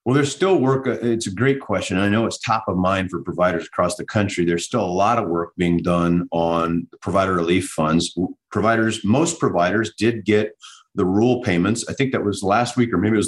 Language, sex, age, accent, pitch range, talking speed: English, male, 40-59, American, 95-115 Hz, 220 wpm